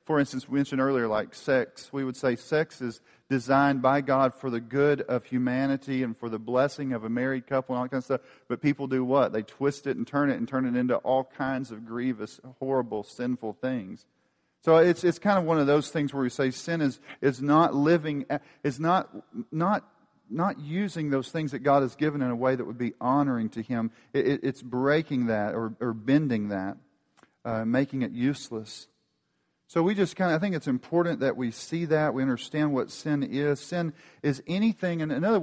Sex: male